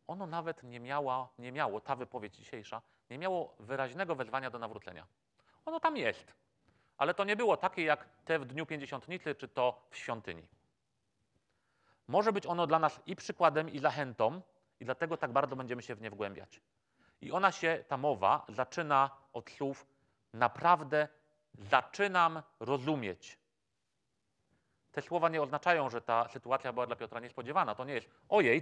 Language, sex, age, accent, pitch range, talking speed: Polish, male, 30-49, native, 120-160 Hz, 155 wpm